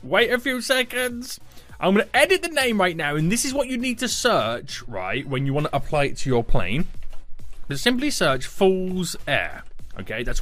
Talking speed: 215 wpm